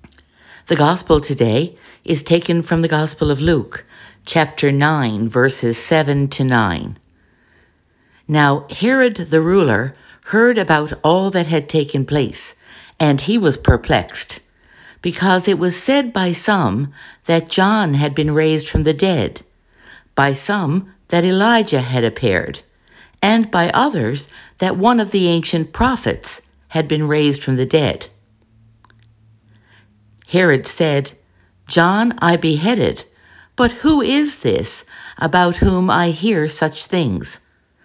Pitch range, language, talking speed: 125-180 Hz, English, 130 wpm